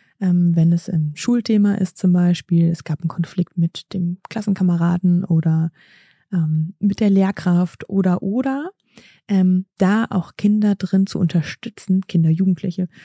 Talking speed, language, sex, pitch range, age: 145 wpm, German, female, 175-210 Hz, 20-39